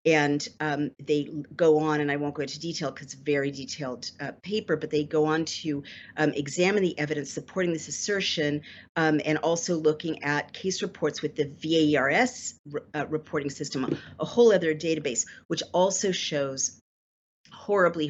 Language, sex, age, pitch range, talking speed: English, female, 50-69, 150-170 Hz, 165 wpm